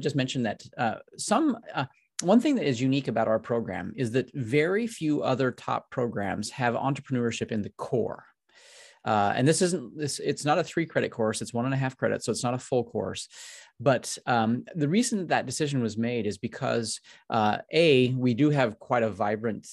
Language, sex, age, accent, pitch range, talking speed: English, male, 30-49, American, 110-135 Hz, 205 wpm